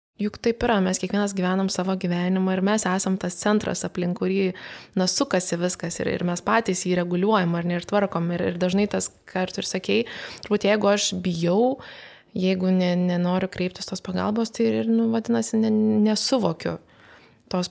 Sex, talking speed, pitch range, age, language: female, 165 wpm, 180-210 Hz, 20-39, English